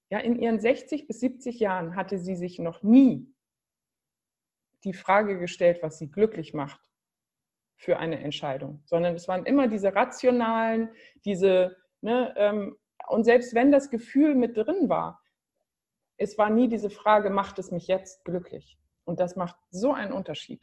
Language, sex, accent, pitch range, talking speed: German, female, German, 170-225 Hz, 155 wpm